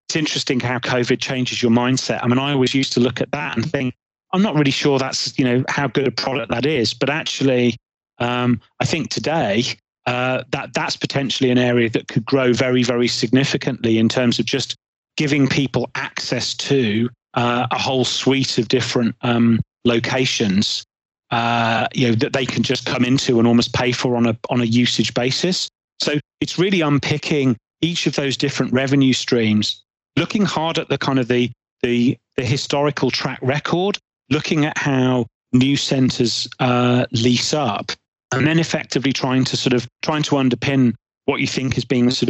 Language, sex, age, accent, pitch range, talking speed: English, male, 30-49, British, 120-135 Hz, 185 wpm